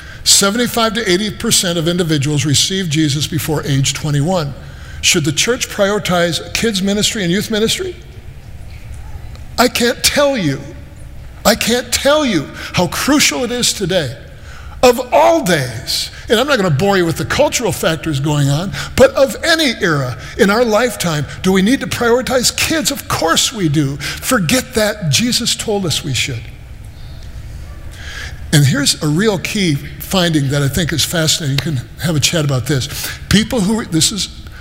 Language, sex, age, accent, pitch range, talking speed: English, male, 60-79, American, 150-215 Hz, 165 wpm